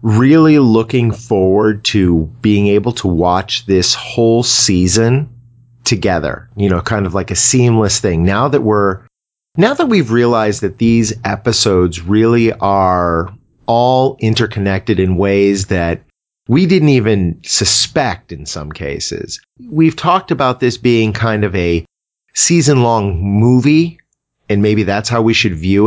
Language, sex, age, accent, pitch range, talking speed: English, male, 40-59, American, 95-120 Hz, 145 wpm